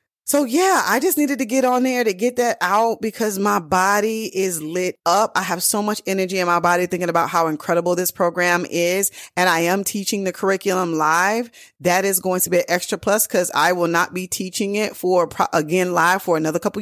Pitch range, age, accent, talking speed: 165-205 Hz, 20-39, American, 220 wpm